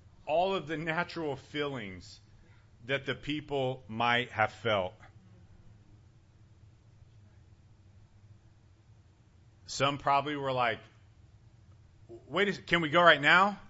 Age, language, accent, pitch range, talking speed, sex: 40-59, English, American, 105-125 Hz, 95 wpm, male